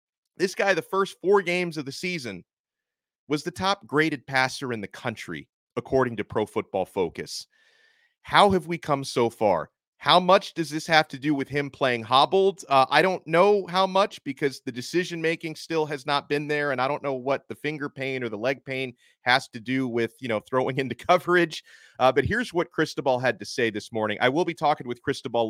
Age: 30-49